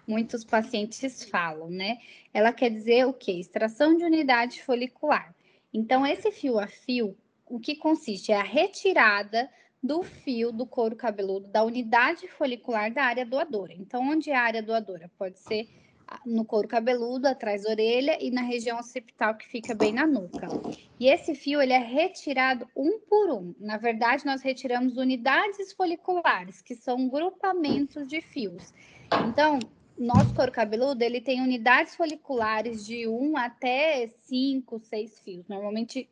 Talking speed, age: 155 wpm, 10-29